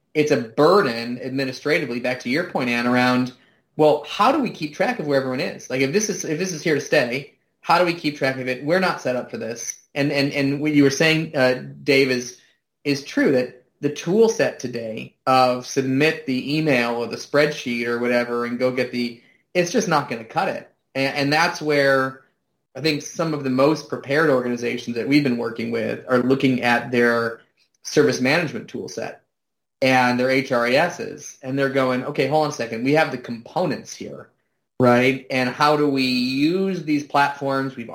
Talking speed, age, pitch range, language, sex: 205 wpm, 30-49, 125-155 Hz, English, male